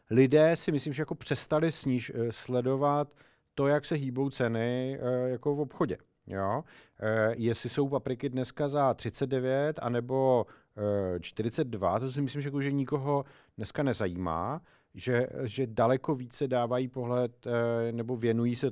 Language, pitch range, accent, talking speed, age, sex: Czech, 110-135 Hz, native, 140 wpm, 40-59, male